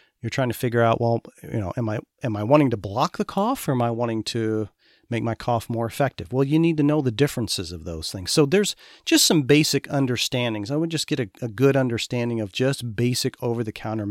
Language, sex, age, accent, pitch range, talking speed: English, male, 40-59, American, 110-140 Hz, 235 wpm